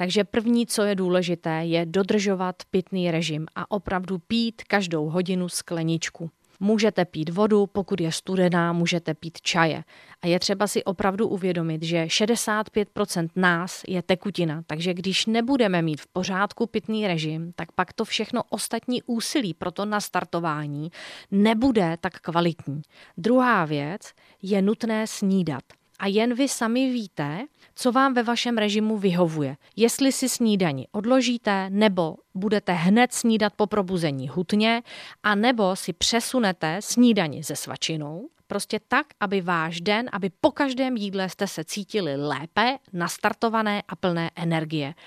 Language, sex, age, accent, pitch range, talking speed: Czech, female, 30-49, native, 170-220 Hz, 140 wpm